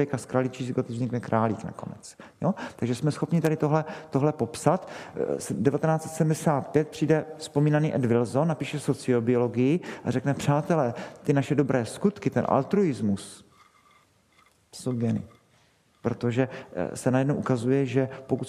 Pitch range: 120-140 Hz